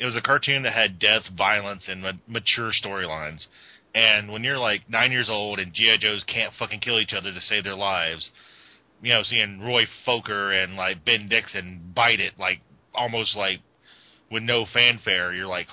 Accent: American